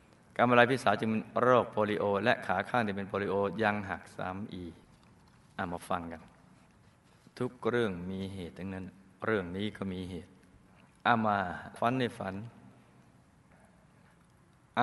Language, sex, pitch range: Thai, male, 95-115 Hz